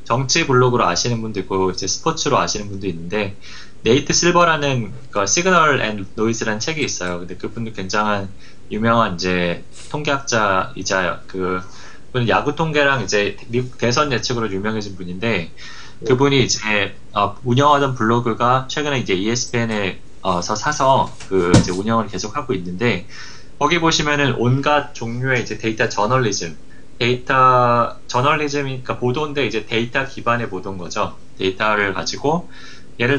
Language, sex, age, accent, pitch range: Korean, male, 20-39, native, 100-130 Hz